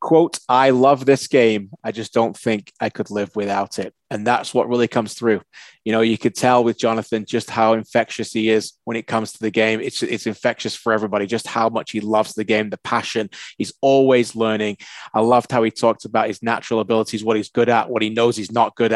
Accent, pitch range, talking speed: British, 105-115 Hz, 235 wpm